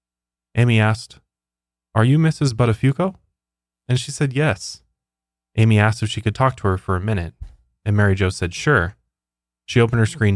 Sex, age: male, 20-39